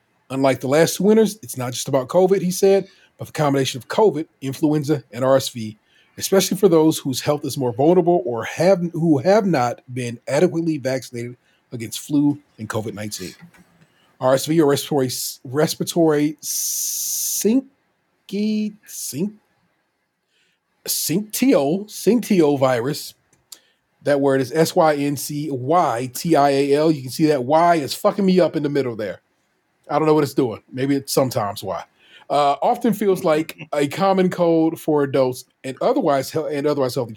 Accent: American